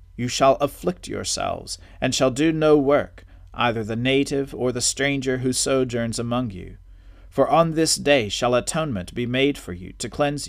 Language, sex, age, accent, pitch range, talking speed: English, male, 40-59, American, 95-135 Hz, 175 wpm